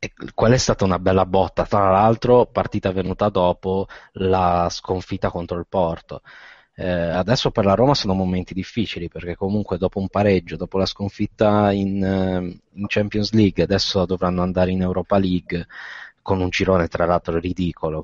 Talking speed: 160 wpm